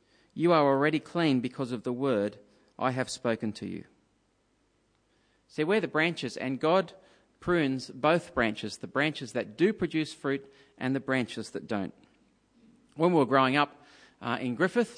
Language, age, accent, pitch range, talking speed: English, 40-59, Australian, 135-175 Hz, 165 wpm